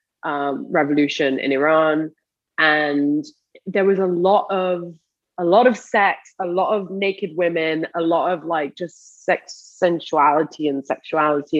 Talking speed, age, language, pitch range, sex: 145 wpm, 20-39, English, 160-200 Hz, female